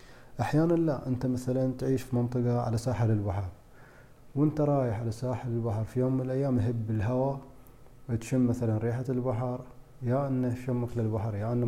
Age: 30-49